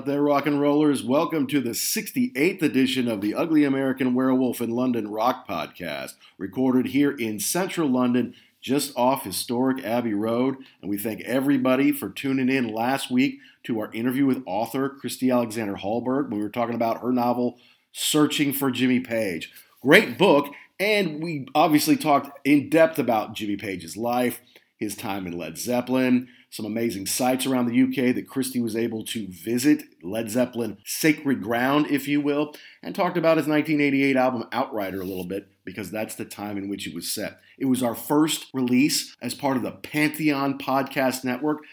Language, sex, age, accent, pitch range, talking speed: English, male, 50-69, American, 115-145 Hz, 175 wpm